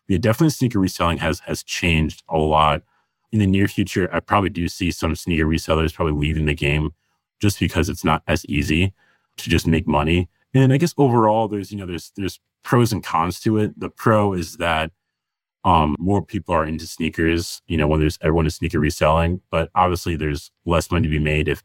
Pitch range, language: 80-100 Hz, English